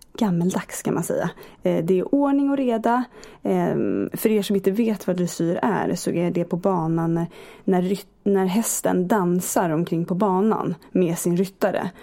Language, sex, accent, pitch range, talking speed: Swedish, female, native, 175-225 Hz, 160 wpm